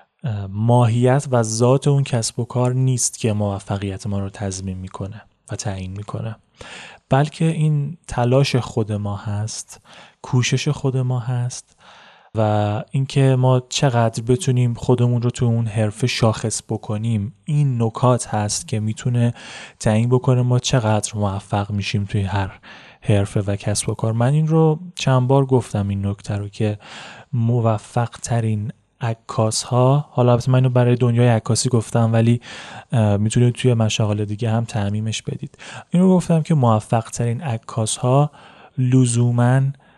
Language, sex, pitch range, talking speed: Persian, male, 110-130 Hz, 140 wpm